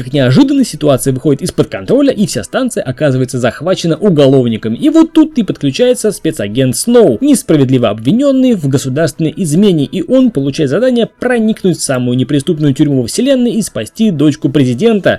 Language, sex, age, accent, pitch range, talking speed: Russian, male, 20-39, native, 140-235 Hz, 155 wpm